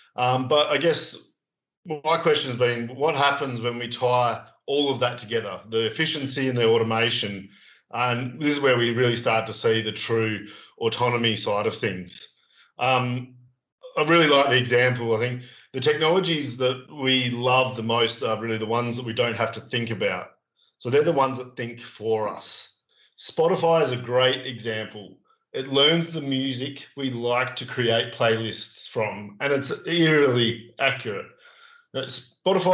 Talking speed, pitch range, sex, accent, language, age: 165 wpm, 120-140 Hz, male, Australian, English, 40-59